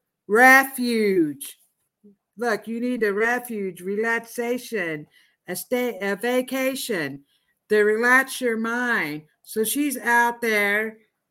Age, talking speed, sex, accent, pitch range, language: 50-69, 100 wpm, female, American, 210-270 Hz, English